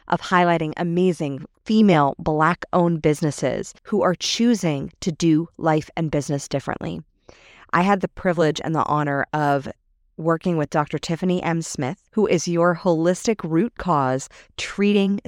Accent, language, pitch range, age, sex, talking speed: American, English, 145-180 Hz, 30-49, female, 145 wpm